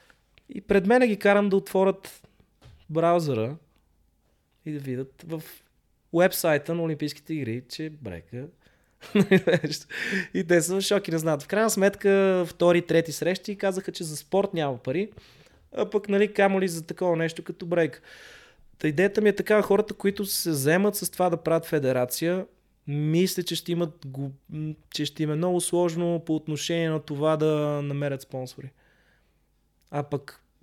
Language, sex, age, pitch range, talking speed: Bulgarian, male, 20-39, 135-175 Hz, 150 wpm